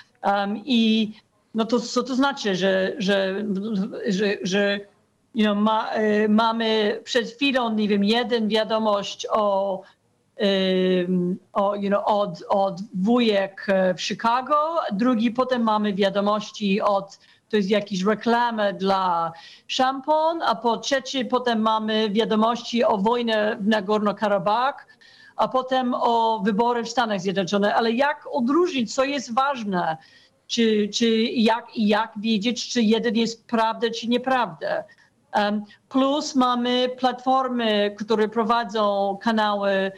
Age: 50-69